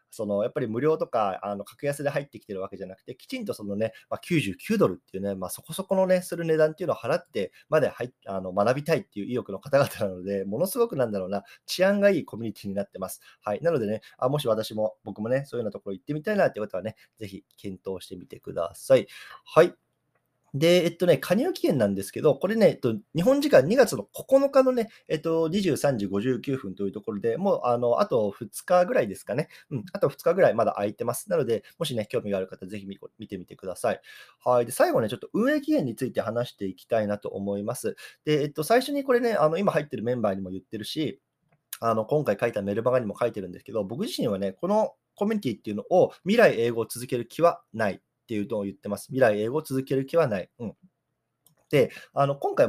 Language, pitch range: Japanese, 105-170 Hz